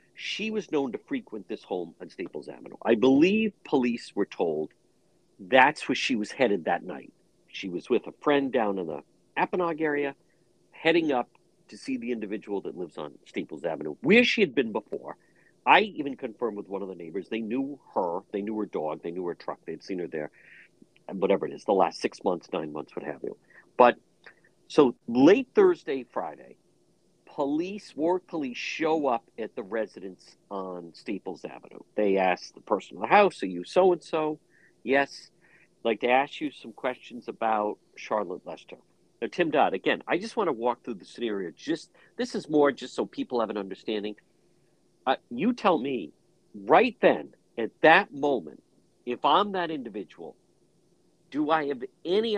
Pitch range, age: 110-175 Hz, 50-69